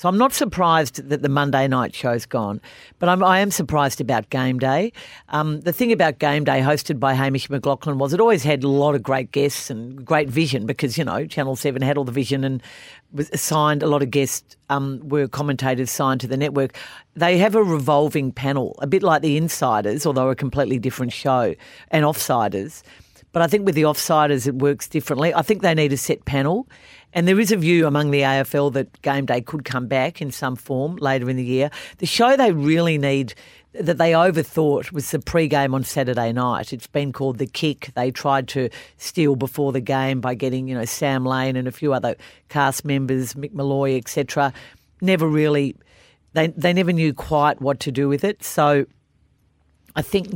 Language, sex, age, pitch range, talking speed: English, female, 40-59, 130-155 Hz, 205 wpm